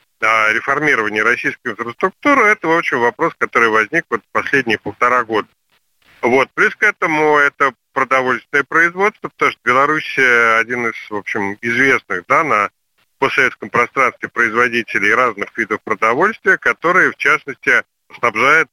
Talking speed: 130 wpm